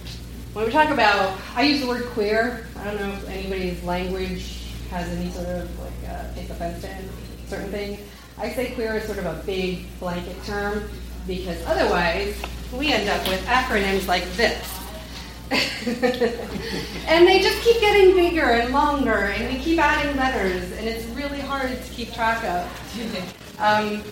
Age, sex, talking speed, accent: 30-49, female, 165 wpm, American